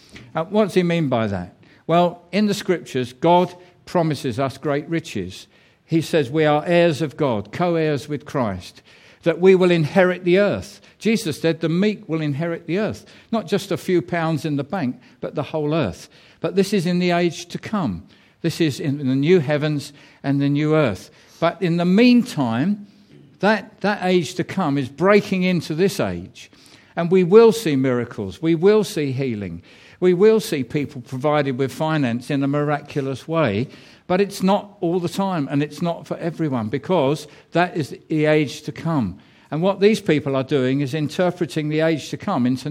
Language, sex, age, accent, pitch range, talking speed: English, male, 50-69, British, 140-180 Hz, 190 wpm